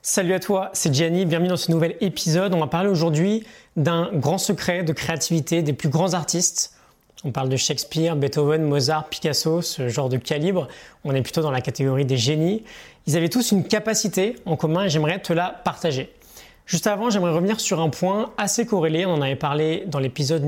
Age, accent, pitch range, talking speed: 20-39, French, 150-190 Hz, 200 wpm